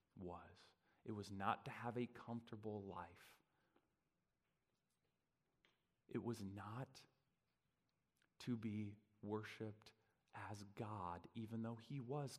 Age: 30-49